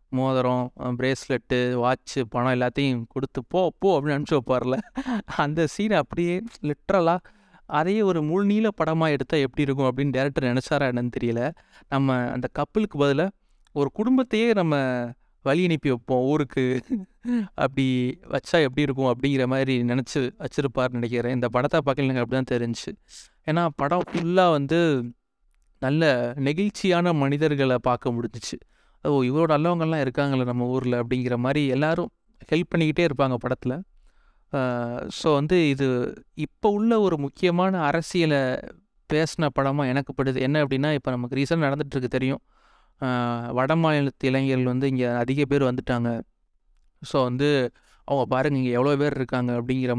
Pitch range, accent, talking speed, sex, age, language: 125-160 Hz, native, 125 wpm, male, 20-39, Tamil